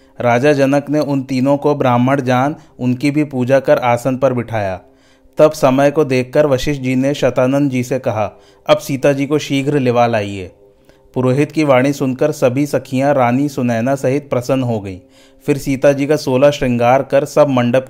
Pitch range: 125-145 Hz